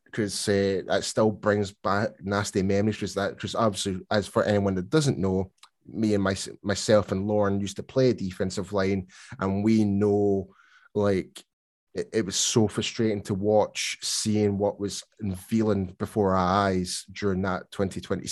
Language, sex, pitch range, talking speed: English, male, 95-115 Hz, 160 wpm